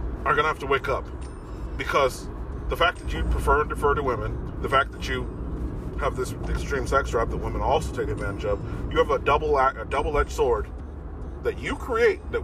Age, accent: 40-59, American